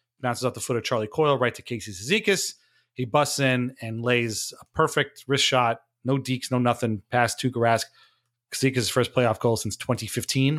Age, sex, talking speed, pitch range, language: 30-49, male, 185 wpm, 120-150 Hz, English